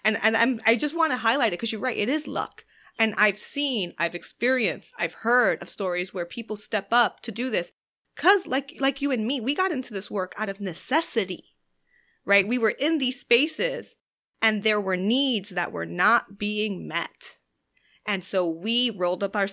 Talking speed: 205 wpm